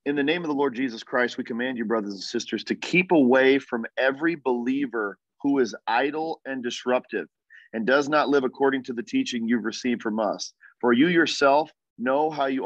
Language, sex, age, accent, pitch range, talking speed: English, male, 40-59, American, 120-160 Hz, 205 wpm